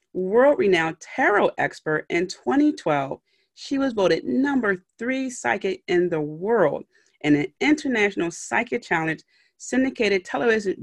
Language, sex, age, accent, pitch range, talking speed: English, female, 30-49, American, 165-250 Hz, 115 wpm